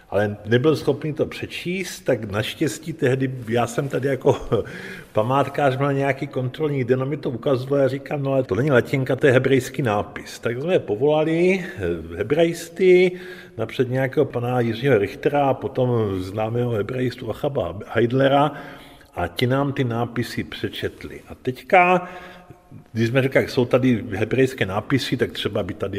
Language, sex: Czech, male